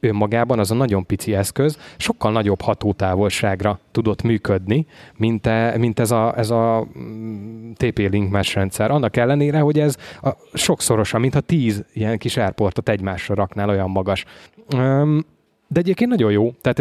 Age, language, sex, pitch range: 20-39, Hungarian, male, 100-120 Hz